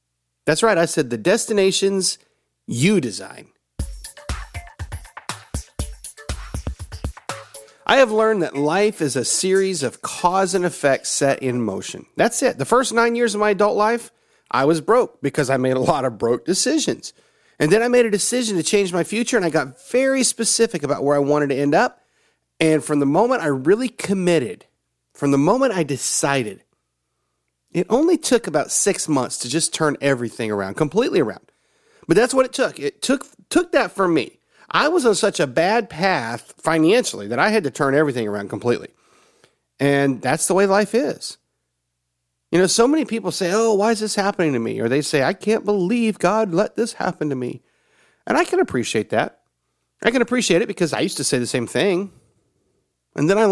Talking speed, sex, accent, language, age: 190 wpm, male, American, English, 40-59